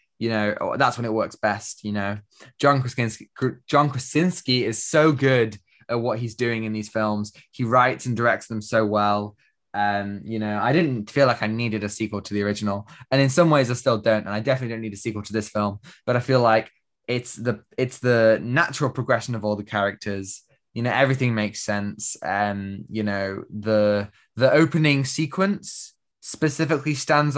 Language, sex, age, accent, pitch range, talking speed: English, male, 20-39, British, 105-125 Hz, 195 wpm